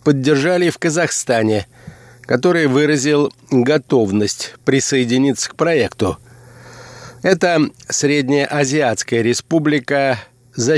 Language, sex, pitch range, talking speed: Russian, male, 125-150 Hz, 80 wpm